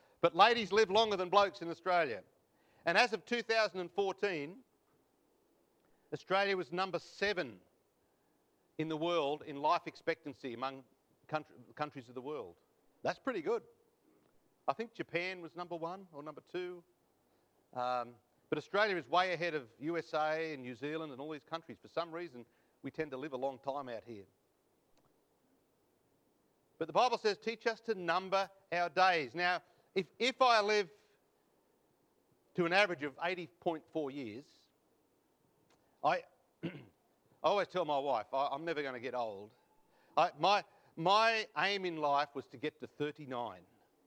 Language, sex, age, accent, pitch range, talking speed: English, male, 50-69, Australian, 145-190 Hz, 150 wpm